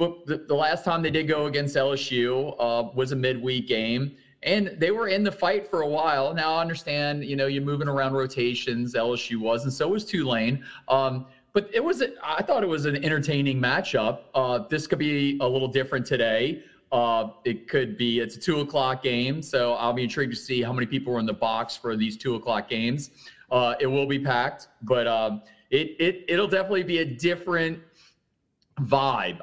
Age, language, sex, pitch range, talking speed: 30-49, English, male, 115-150 Hz, 205 wpm